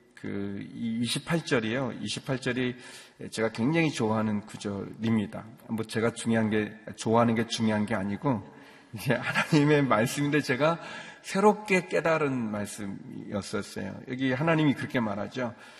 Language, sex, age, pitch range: Korean, male, 40-59, 115-165 Hz